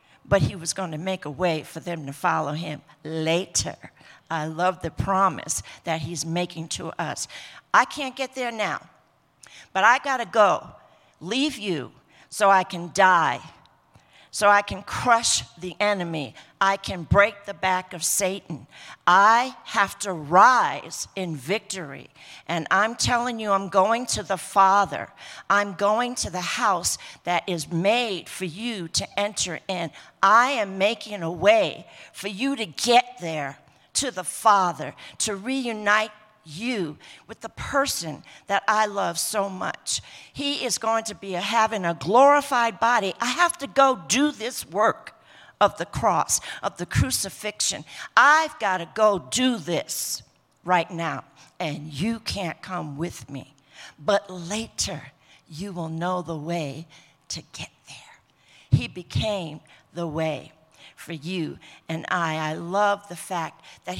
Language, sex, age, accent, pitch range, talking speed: English, female, 50-69, American, 165-215 Hz, 150 wpm